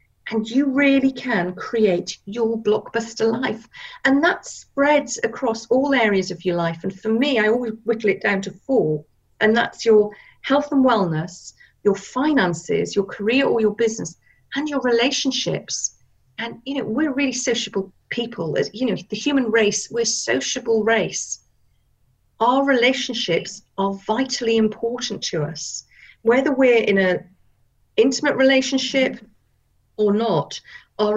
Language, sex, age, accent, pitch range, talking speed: English, female, 40-59, British, 195-255 Hz, 140 wpm